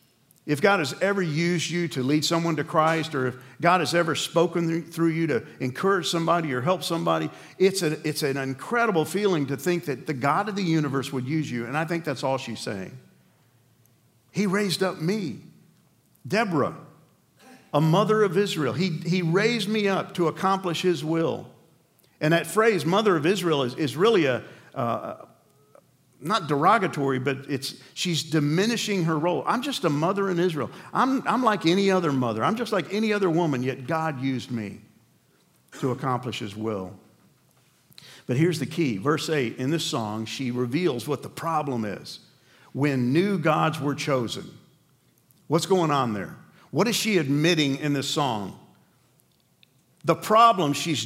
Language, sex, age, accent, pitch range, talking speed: English, male, 50-69, American, 140-180 Hz, 170 wpm